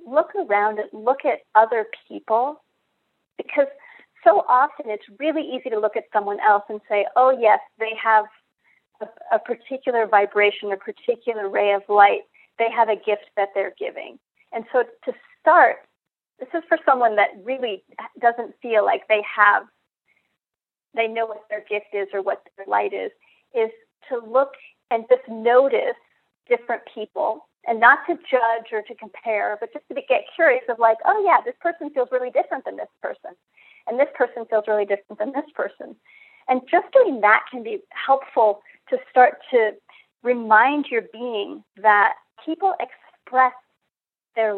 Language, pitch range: English, 215-295 Hz